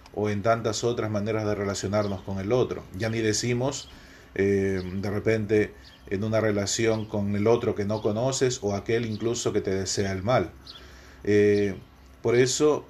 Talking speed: 165 wpm